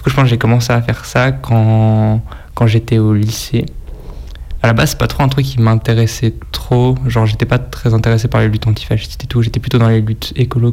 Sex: male